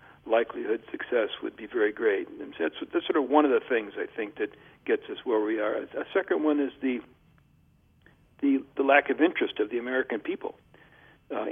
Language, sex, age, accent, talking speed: English, male, 60-79, American, 195 wpm